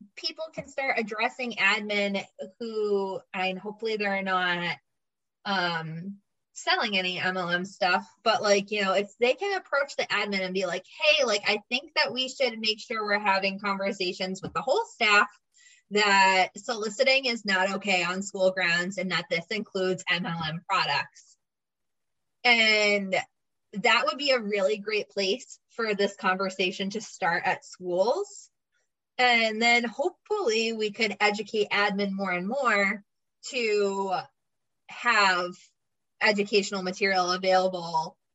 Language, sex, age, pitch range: English, female, 20-39, 190-240 Hz